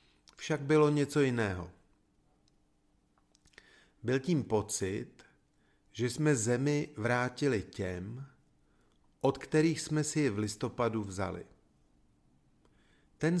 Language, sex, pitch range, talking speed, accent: Czech, male, 100-140 Hz, 90 wpm, native